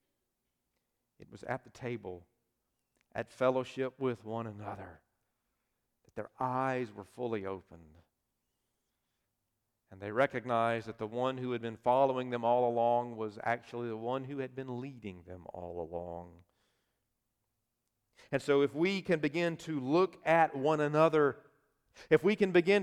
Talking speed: 145 wpm